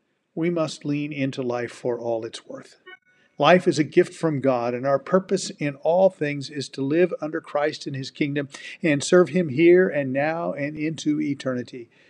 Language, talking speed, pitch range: English, 190 wpm, 130-165 Hz